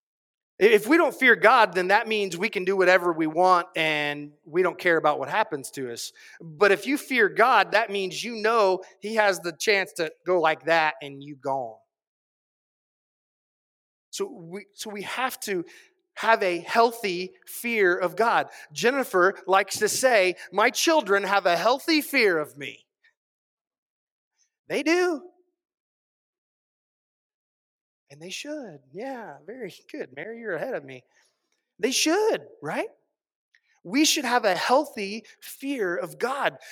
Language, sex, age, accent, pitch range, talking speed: English, male, 30-49, American, 185-280 Hz, 150 wpm